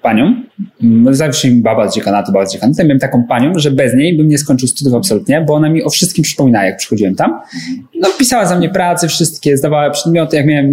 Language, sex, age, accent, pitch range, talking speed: Polish, male, 20-39, native, 125-180 Hz, 230 wpm